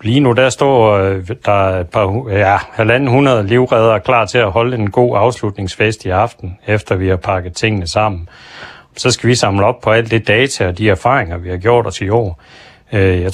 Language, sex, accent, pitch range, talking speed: Danish, male, native, 95-115 Hz, 200 wpm